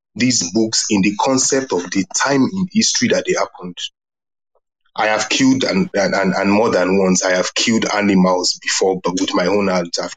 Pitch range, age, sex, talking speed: 100-150 Hz, 20-39, male, 200 wpm